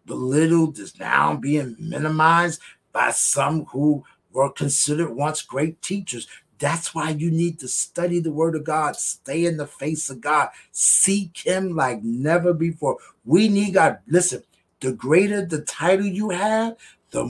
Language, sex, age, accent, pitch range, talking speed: English, male, 50-69, American, 140-180 Hz, 155 wpm